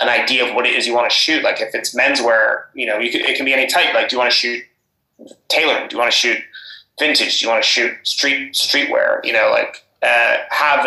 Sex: male